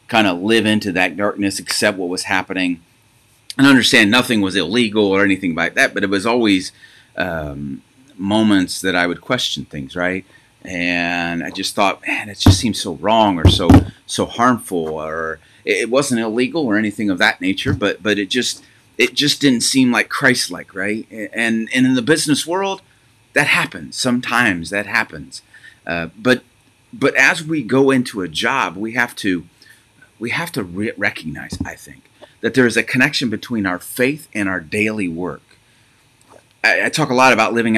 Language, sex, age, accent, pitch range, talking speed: English, male, 30-49, American, 95-125 Hz, 185 wpm